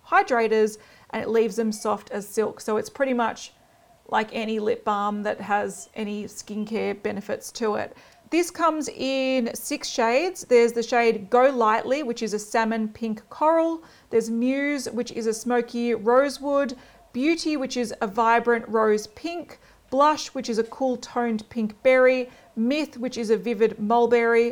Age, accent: 40-59, Australian